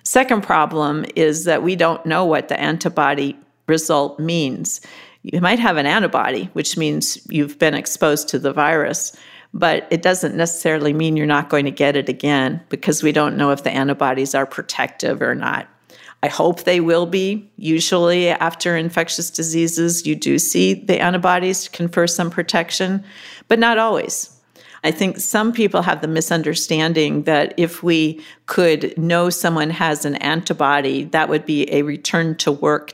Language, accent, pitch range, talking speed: English, American, 150-175 Hz, 160 wpm